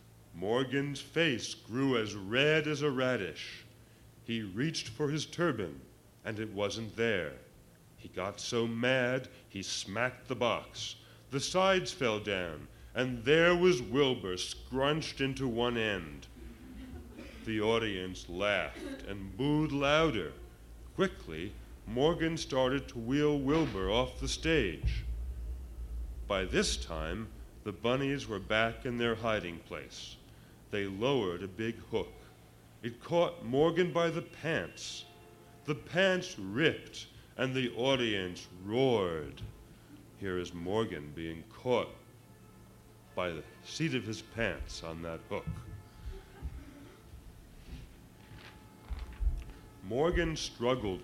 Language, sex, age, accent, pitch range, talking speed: English, male, 50-69, American, 95-135 Hz, 115 wpm